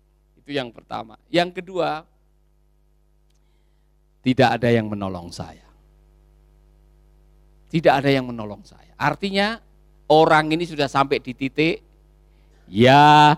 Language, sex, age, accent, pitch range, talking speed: Indonesian, male, 50-69, native, 130-185 Hz, 105 wpm